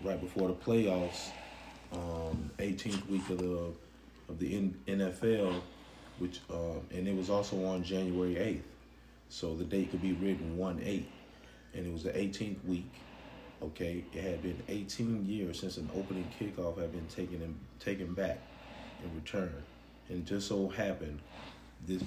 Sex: male